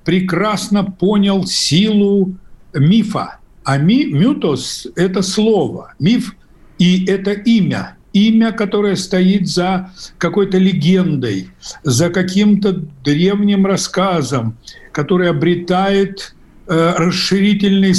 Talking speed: 85 wpm